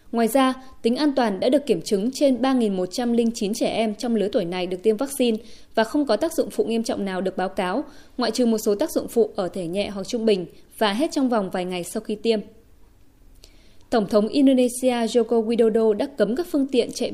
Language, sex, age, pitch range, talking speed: Vietnamese, female, 20-39, 215-265 Hz, 230 wpm